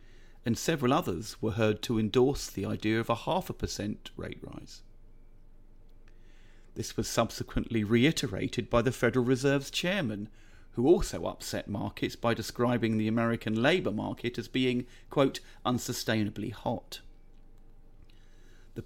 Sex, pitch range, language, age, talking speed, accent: male, 105-125 Hz, English, 40-59, 125 wpm, British